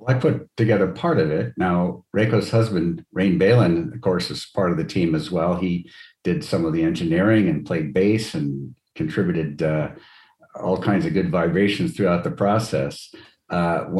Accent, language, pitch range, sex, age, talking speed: American, English, 80-105 Hz, male, 50-69, 175 wpm